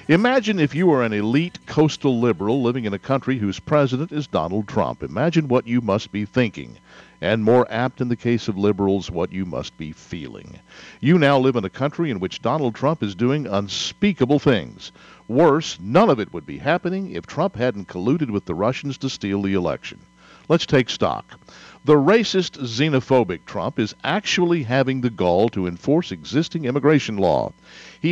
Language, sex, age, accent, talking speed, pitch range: English, male, 50-69, American, 185 wpm, 105-155 Hz